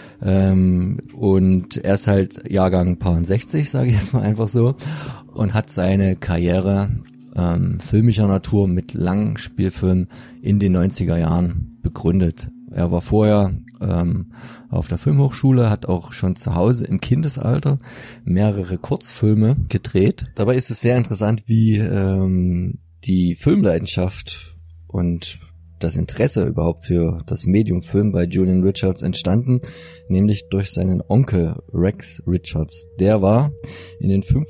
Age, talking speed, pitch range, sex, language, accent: 30-49, 130 wpm, 90-110 Hz, male, German, German